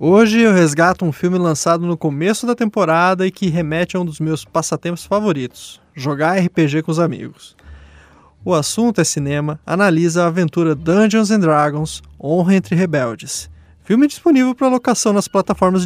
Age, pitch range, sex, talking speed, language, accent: 20-39, 155-210 Hz, male, 160 wpm, Portuguese, Brazilian